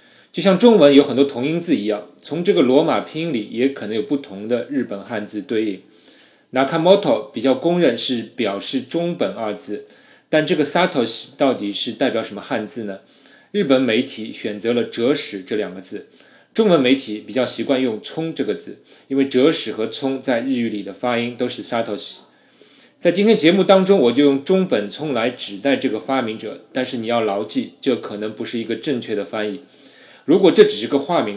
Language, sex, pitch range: Chinese, male, 110-140 Hz